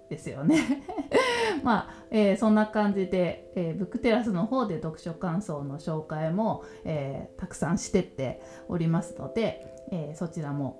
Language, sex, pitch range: Japanese, female, 150-225 Hz